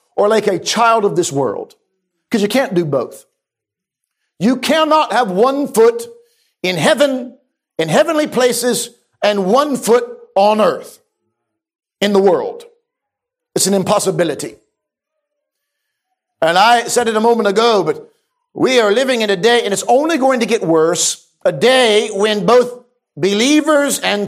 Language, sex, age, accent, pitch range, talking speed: English, male, 50-69, American, 215-310 Hz, 150 wpm